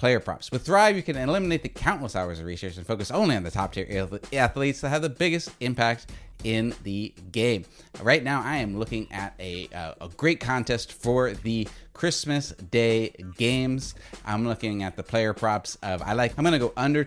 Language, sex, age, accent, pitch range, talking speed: English, male, 30-49, American, 95-125 Hz, 195 wpm